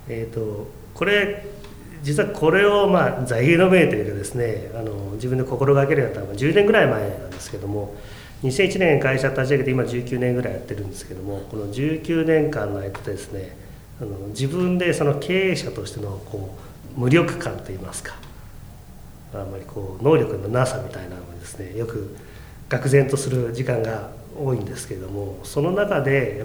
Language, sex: Japanese, male